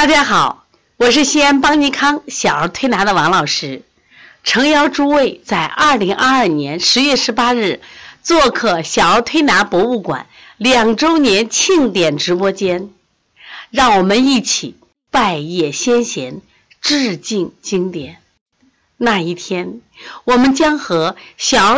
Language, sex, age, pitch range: Chinese, female, 50-69, 185-270 Hz